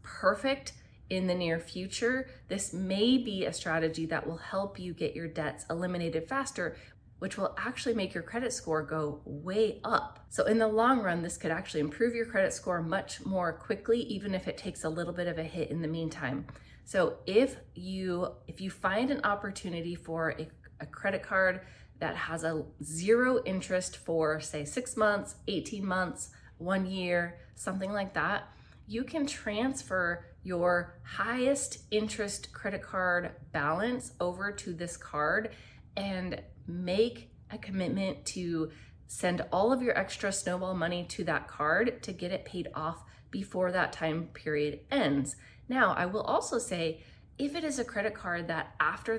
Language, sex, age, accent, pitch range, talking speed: English, female, 20-39, American, 160-210 Hz, 165 wpm